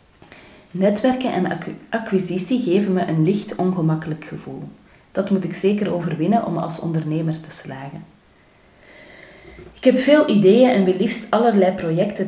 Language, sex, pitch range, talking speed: Dutch, female, 155-195 Hz, 135 wpm